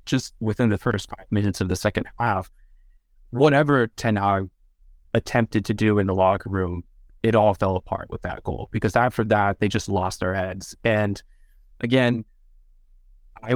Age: 20-39